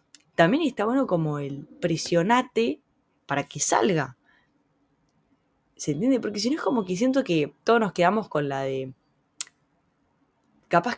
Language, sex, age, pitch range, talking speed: Spanish, female, 10-29, 145-225 Hz, 140 wpm